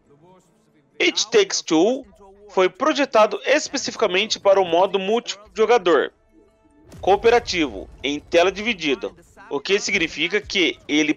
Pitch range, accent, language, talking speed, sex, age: 185-255 Hz, Brazilian, Portuguese, 100 wpm, male, 30-49